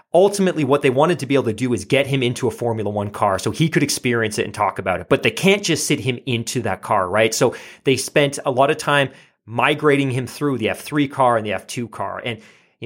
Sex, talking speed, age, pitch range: male, 255 wpm, 30-49, 120-155 Hz